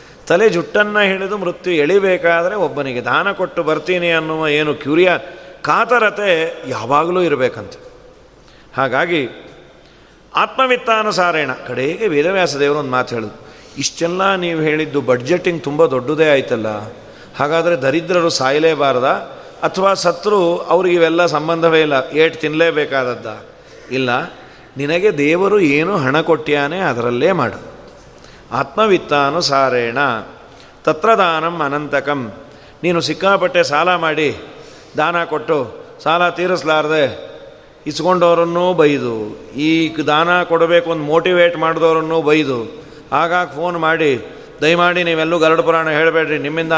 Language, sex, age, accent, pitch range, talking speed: Kannada, male, 30-49, native, 150-180 Hz, 100 wpm